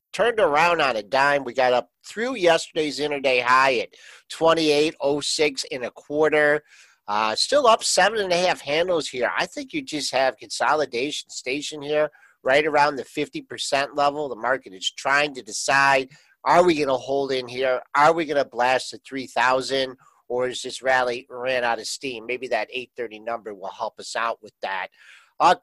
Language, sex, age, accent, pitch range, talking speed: English, male, 50-69, American, 130-170 Hz, 185 wpm